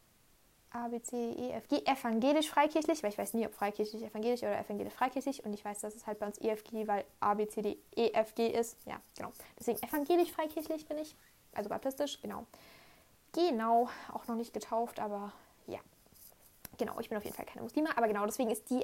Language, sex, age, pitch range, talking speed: German, female, 10-29, 210-230 Hz, 210 wpm